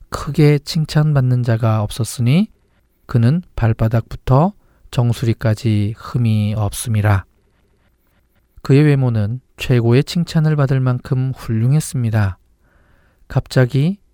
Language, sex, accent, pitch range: Korean, male, native, 115-140 Hz